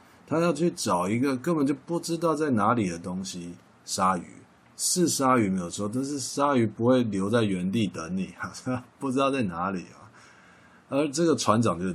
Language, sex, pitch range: Chinese, male, 90-125 Hz